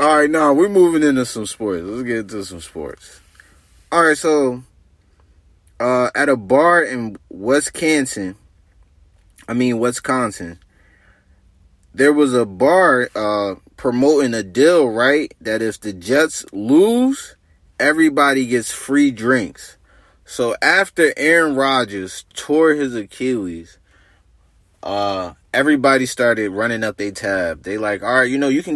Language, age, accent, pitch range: English, 20-39, American, 95-130 Hz